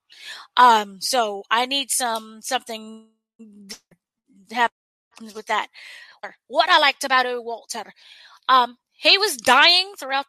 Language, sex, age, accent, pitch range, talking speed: English, female, 20-39, American, 225-285 Hz, 120 wpm